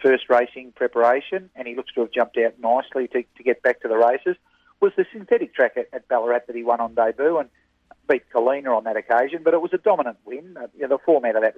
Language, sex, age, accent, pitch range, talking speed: English, male, 40-59, Australian, 120-155 Hz, 255 wpm